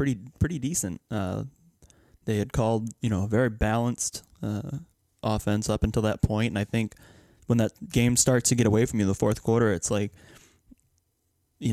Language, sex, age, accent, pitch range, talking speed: English, male, 20-39, American, 105-125 Hz, 190 wpm